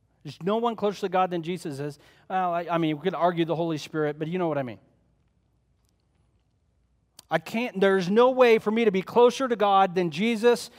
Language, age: English, 40-59